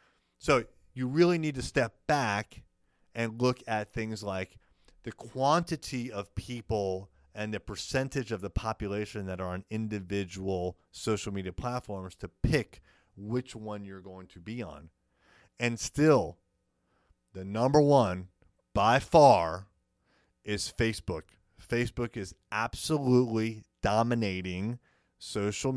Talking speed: 120 wpm